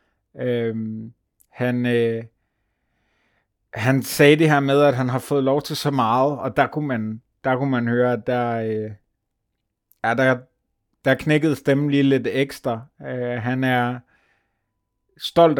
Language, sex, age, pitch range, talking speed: Danish, male, 30-49, 120-140 Hz, 150 wpm